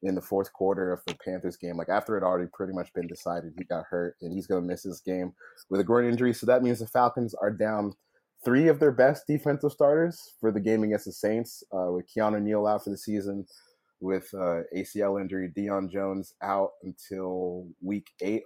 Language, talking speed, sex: English, 220 wpm, male